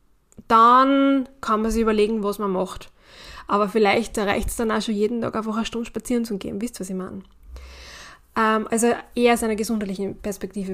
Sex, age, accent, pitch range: female, 10-29, German, 200-240 Hz